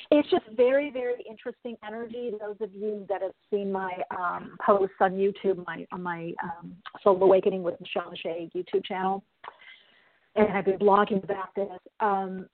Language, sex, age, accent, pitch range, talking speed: English, female, 40-59, American, 185-225 Hz, 170 wpm